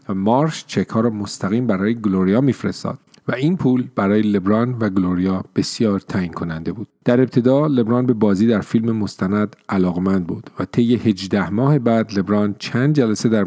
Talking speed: 165 wpm